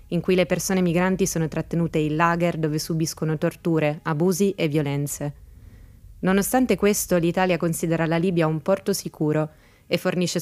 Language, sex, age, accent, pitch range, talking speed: Italian, female, 20-39, native, 155-180 Hz, 150 wpm